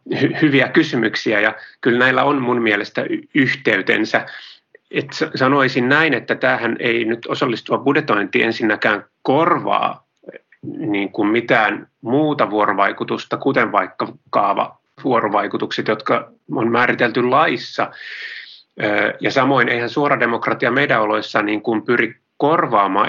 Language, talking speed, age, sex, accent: Finnish, 110 wpm, 30-49, male, native